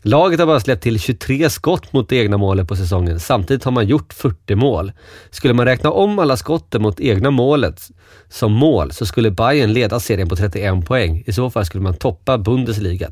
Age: 30-49